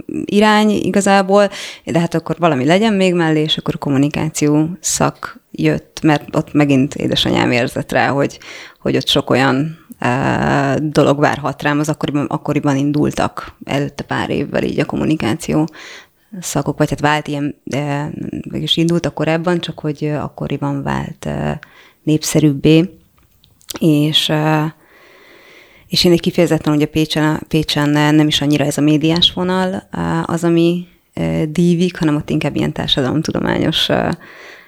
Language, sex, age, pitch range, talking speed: Hungarian, female, 20-39, 150-170 Hz, 140 wpm